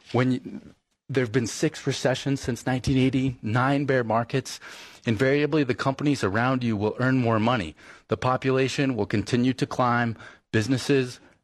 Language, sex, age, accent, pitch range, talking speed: English, male, 30-49, American, 100-125 Hz, 140 wpm